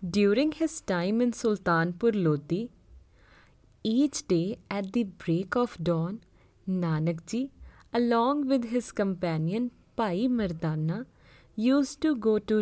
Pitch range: 160-240 Hz